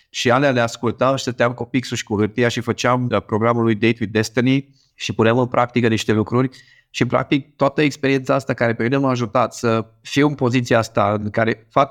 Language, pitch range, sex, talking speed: Romanian, 110-130 Hz, male, 205 wpm